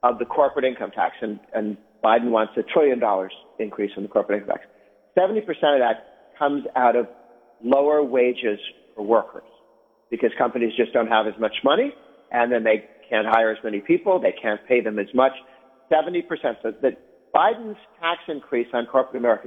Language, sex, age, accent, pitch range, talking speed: English, male, 50-69, American, 120-150 Hz, 190 wpm